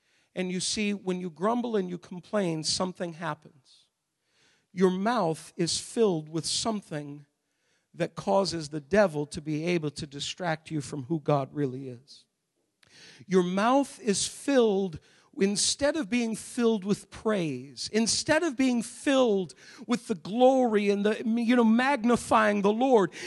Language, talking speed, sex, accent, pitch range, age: English, 145 wpm, male, American, 205-340 Hz, 50-69